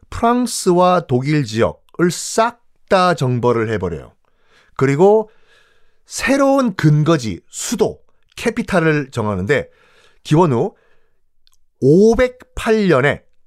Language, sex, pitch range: Korean, male, 140-210 Hz